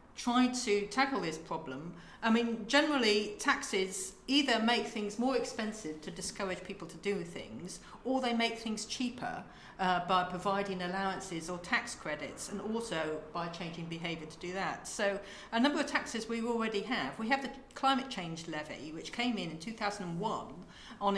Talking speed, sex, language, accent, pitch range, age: 165 wpm, female, English, British, 185-230 Hz, 50-69